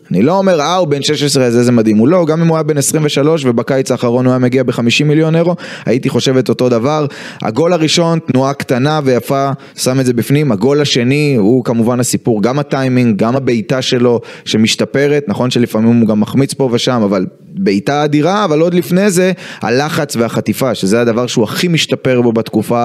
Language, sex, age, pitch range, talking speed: Hebrew, male, 20-39, 115-140 Hz, 190 wpm